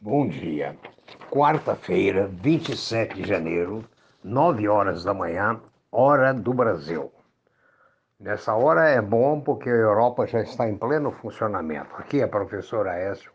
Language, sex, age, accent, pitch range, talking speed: Portuguese, male, 60-79, Brazilian, 110-150 Hz, 135 wpm